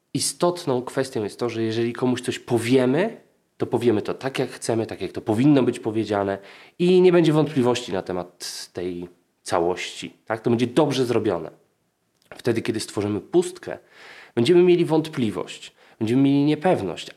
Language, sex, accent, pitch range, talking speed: Polish, male, native, 110-155 Hz, 150 wpm